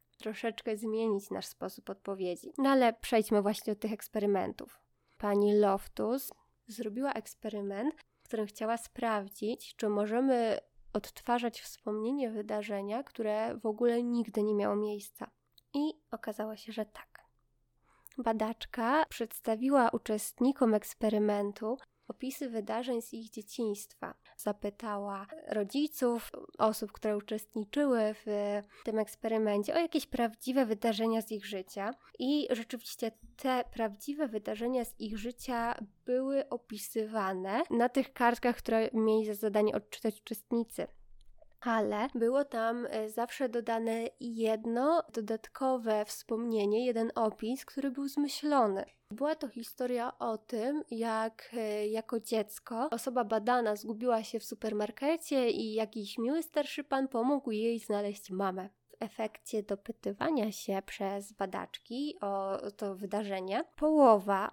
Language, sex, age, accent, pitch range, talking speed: Polish, female, 20-39, native, 210-250 Hz, 115 wpm